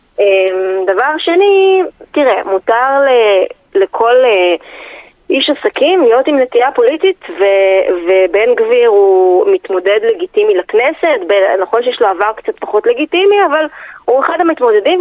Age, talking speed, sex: 20-39, 115 wpm, female